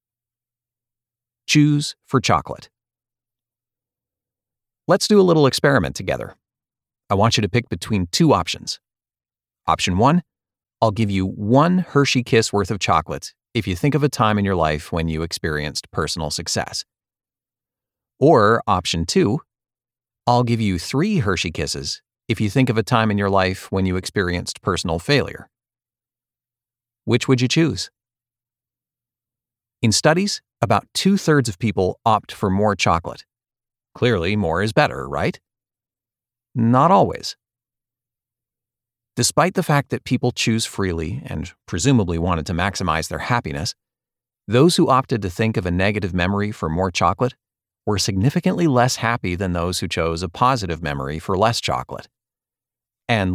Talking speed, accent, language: 145 wpm, American, English